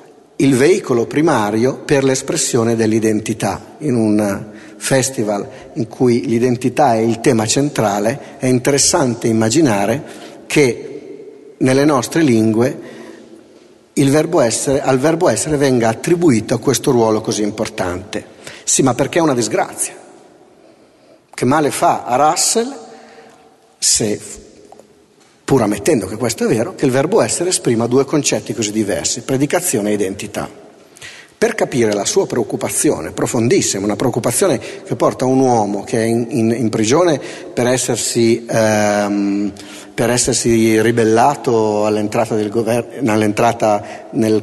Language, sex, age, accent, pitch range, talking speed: Italian, male, 50-69, native, 110-135 Hz, 120 wpm